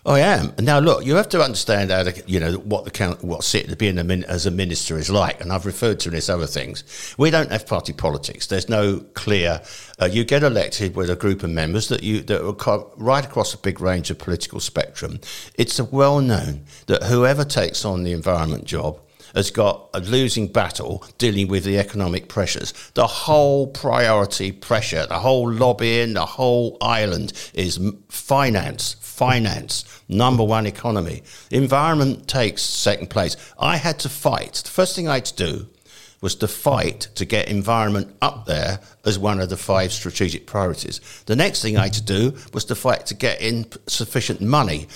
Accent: British